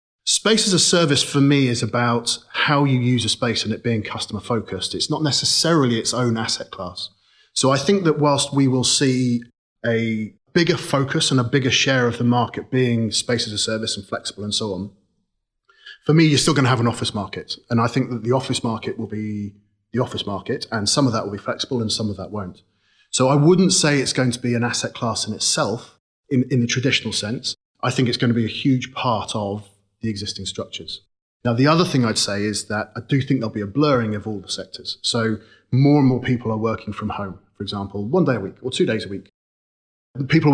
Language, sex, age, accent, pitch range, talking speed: English, male, 30-49, British, 110-135 Hz, 235 wpm